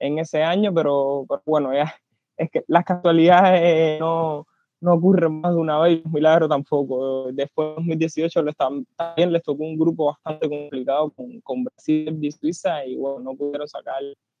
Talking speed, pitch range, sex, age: 170 wpm, 145-175 Hz, male, 20-39